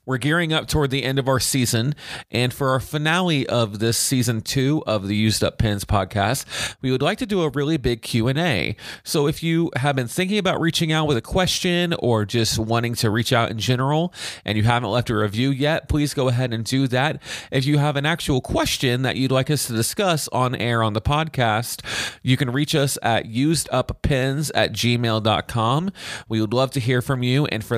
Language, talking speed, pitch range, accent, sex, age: English, 215 wpm, 105-135 Hz, American, male, 30-49